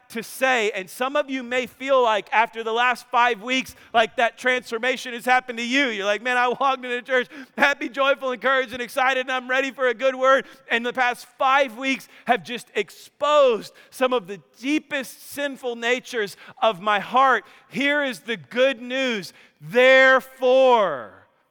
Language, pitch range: English, 235-295 Hz